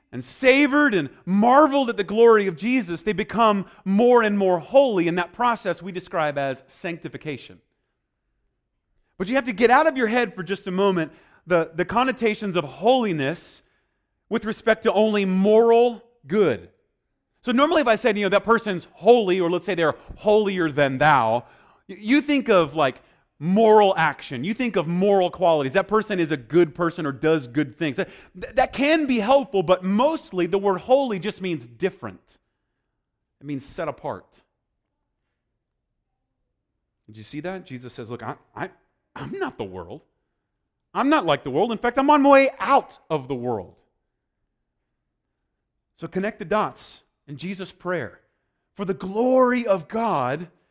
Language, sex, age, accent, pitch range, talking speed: English, male, 30-49, American, 165-235 Hz, 165 wpm